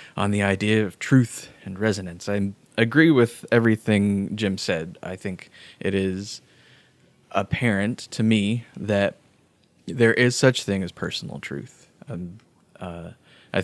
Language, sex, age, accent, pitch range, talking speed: English, male, 20-39, American, 95-115 Hz, 135 wpm